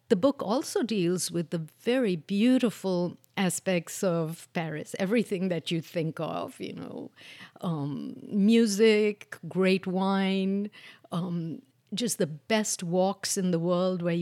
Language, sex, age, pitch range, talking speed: English, female, 60-79, 175-215 Hz, 130 wpm